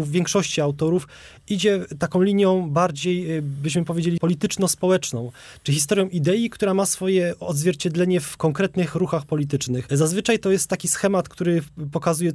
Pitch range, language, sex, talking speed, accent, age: 140-165 Hz, Polish, male, 135 wpm, native, 20-39